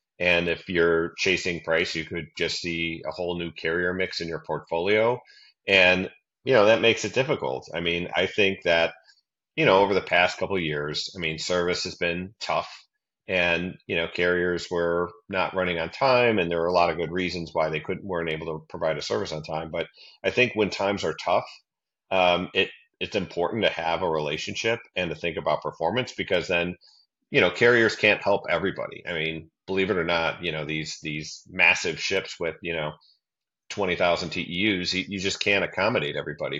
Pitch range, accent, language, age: 85-95 Hz, American, English, 40-59